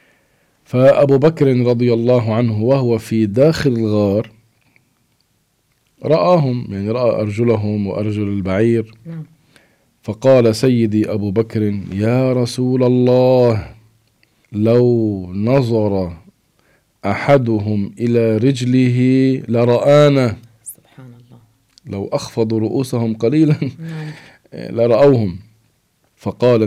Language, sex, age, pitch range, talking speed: English, male, 40-59, 105-125 Hz, 75 wpm